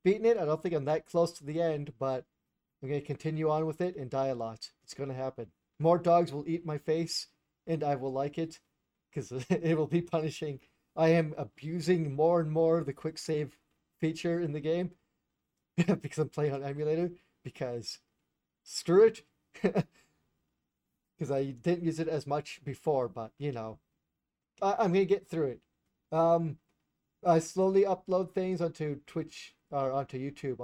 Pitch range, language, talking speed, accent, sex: 135-165 Hz, English, 180 wpm, American, male